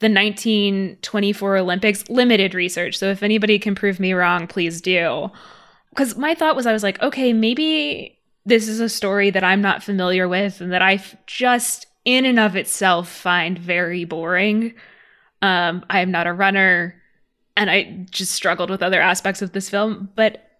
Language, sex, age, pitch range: English, female, 20-39, 185-220 Hz